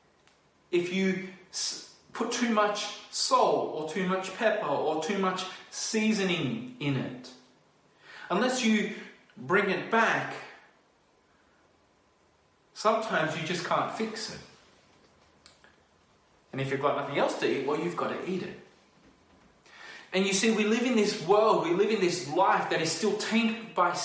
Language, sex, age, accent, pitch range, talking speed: English, male, 30-49, Australian, 170-225 Hz, 145 wpm